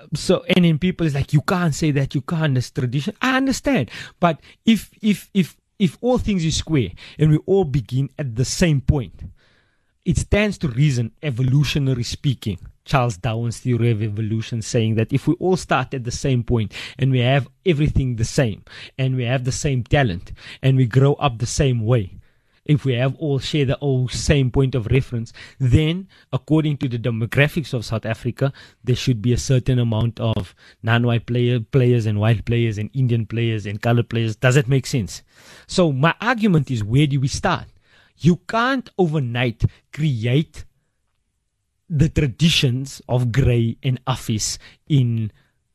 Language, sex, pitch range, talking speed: English, male, 115-150 Hz, 175 wpm